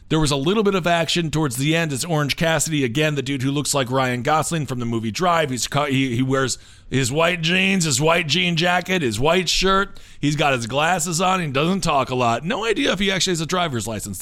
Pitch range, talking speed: 130-185 Hz, 240 wpm